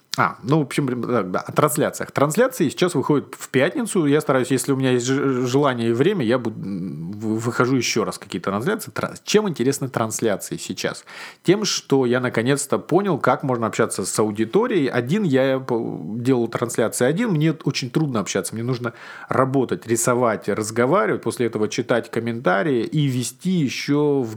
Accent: native